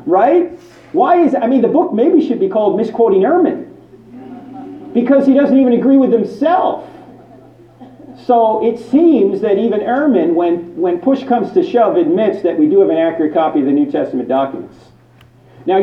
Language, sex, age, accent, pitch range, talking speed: English, male, 40-59, American, 205-340 Hz, 180 wpm